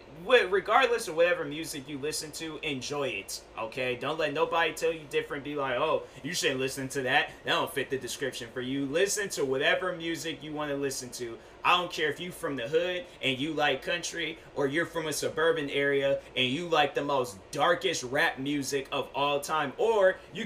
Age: 20-39